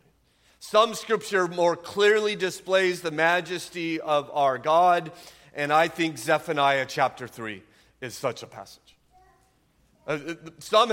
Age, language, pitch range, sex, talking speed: 40-59, English, 165-200 Hz, male, 115 wpm